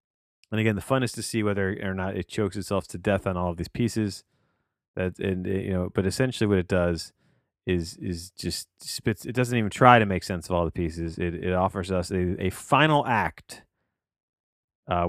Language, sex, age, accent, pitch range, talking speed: English, male, 30-49, American, 85-105 Hz, 210 wpm